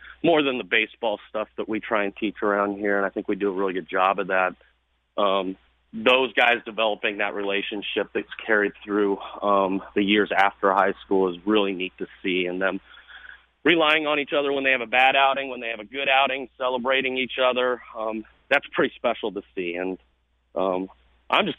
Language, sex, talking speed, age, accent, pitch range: English, male, 205 wpm, 40-59, American, 100-130 Hz